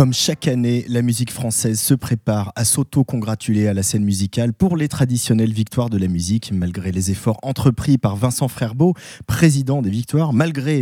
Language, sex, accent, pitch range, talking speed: French, male, French, 110-140 Hz, 175 wpm